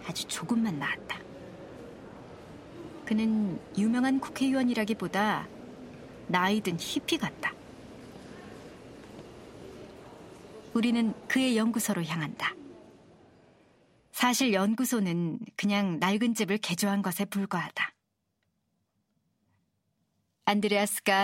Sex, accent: male, native